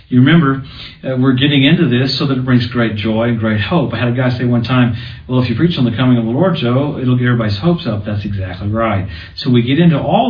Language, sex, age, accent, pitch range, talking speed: English, male, 50-69, American, 115-135 Hz, 275 wpm